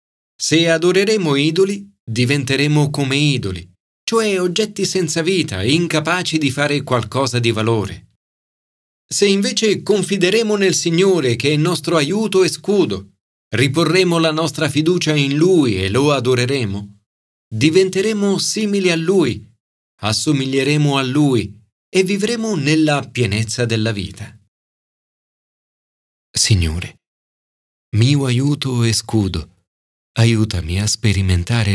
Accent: native